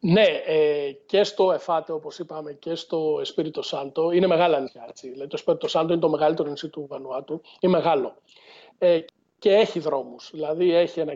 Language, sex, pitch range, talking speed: Greek, male, 160-210 Hz, 160 wpm